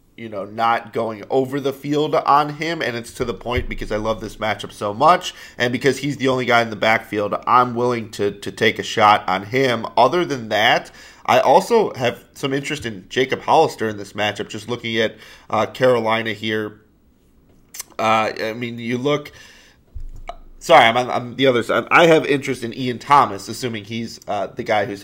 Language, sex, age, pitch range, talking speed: English, male, 30-49, 110-135 Hz, 195 wpm